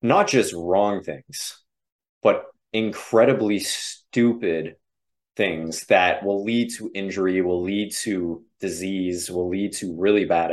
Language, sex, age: English, male, 30-49